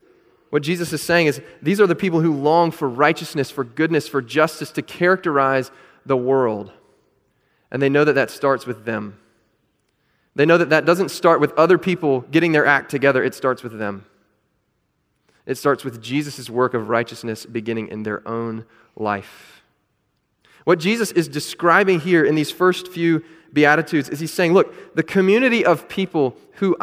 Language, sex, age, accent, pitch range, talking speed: English, male, 30-49, American, 130-165 Hz, 170 wpm